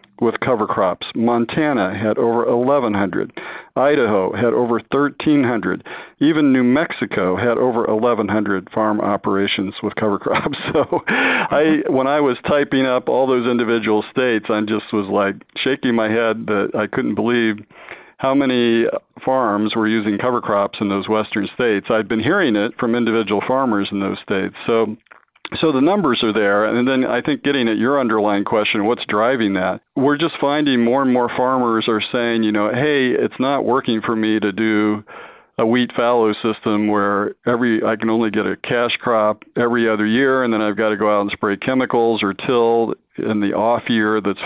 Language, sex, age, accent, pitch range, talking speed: English, male, 50-69, American, 105-125 Hz, 180 wpm